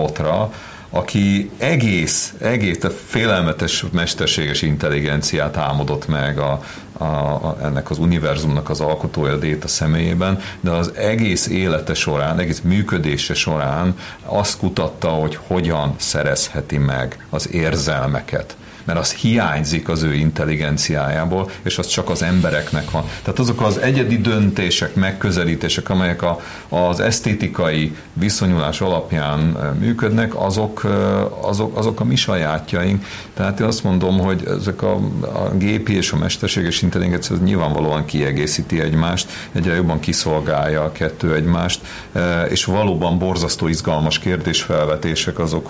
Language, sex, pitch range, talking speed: Hungarian, male, 75-95 Hz, 125 wpm